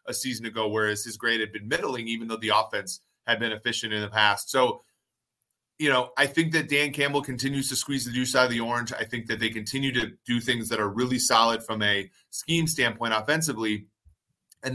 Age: 30-49